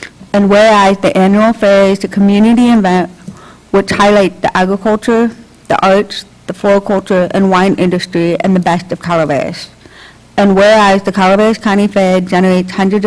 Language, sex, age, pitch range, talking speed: English, female, 50-69, 185-205 Hz, 150 wpm